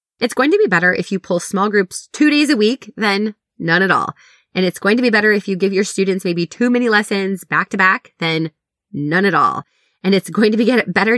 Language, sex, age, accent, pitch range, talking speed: English, female, 20-39, American, 170-230 Hz, 245 wpm